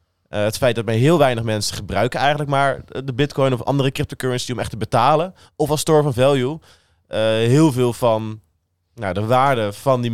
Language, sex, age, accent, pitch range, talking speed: Dutch, male, 20-39, Dutch, 110-140 Hz, 195 wpm